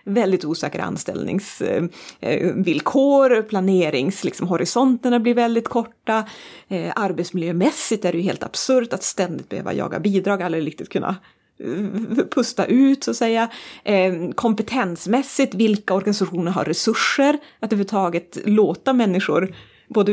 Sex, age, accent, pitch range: female, 30-49, native, 180-230 Hz